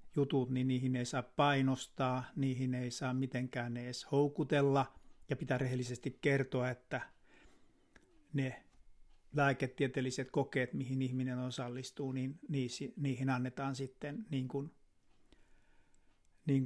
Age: 60-79